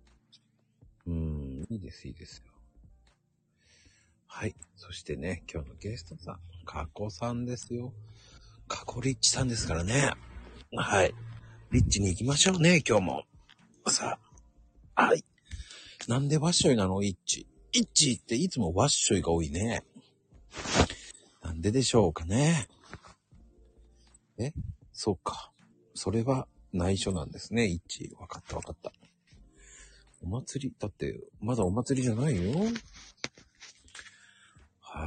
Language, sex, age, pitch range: Japanese, male, 50-69, 80-120 Hz